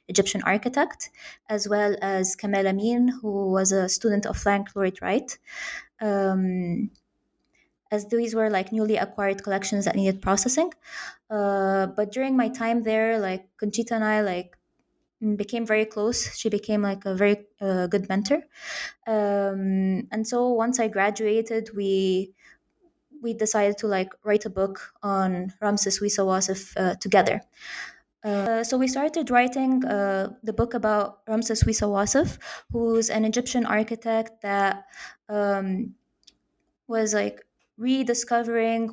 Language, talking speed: English, 135 wpm